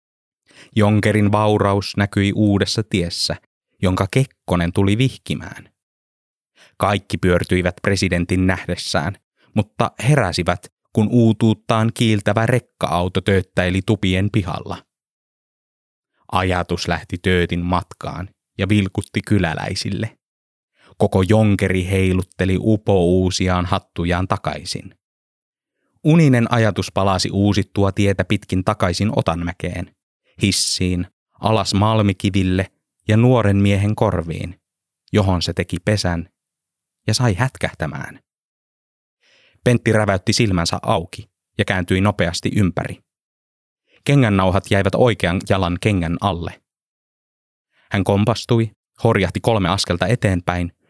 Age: 20-39